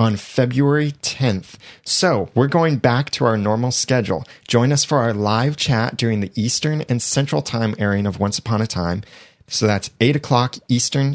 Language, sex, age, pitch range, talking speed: English, male, 30-49, 105-130 Hz, 185 wpm